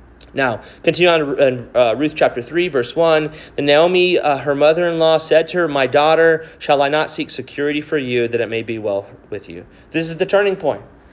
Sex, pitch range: male, 145-215 Hz